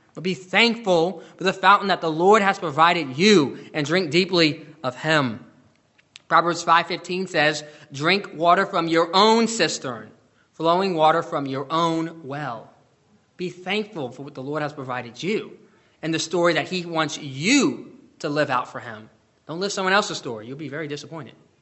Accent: American